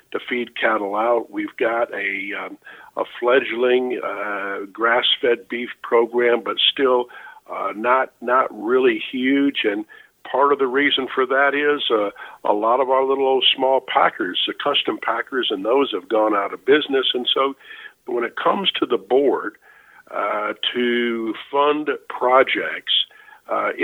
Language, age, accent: English, 50-69, American